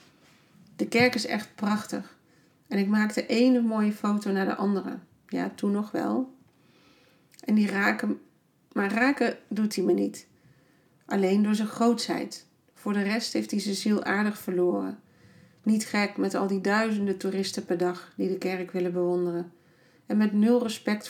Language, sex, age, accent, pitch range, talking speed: Dutch, female, 40-59, Dutch, 190-225 Hz, 165 wpm